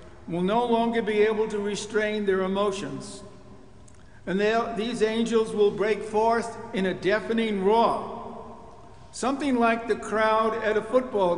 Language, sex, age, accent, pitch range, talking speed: English, male, 60-79, American, 180-220 Hz, 135 wpm